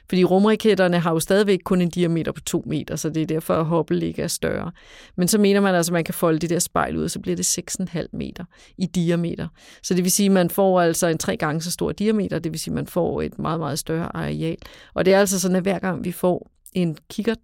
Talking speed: 270 wpm